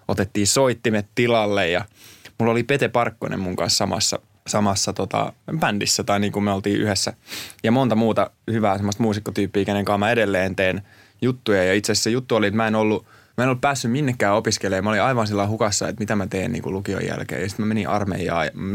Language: Finnish